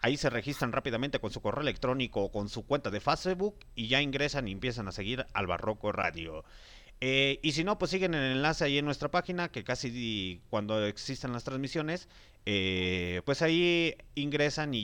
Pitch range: 110-155 Hz